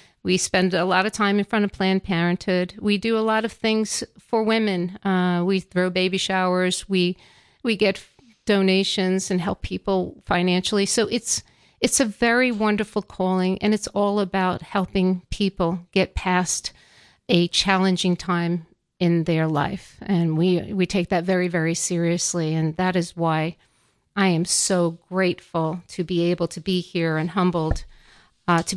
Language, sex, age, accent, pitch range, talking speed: English, female, 40-59, American, 175-200 Hz, 165 wpm